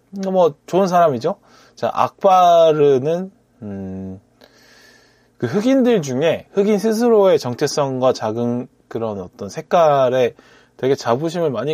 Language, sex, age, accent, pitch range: Korean, male, 20-39, native, 110-150 Hz